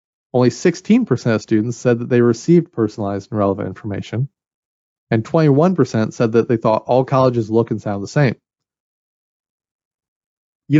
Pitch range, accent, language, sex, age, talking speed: 110-140 Hz, American, English, male, 30-49, 145 wpm